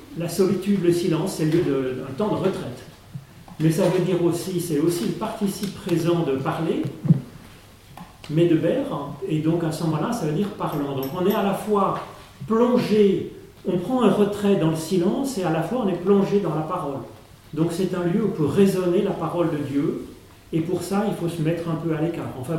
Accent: French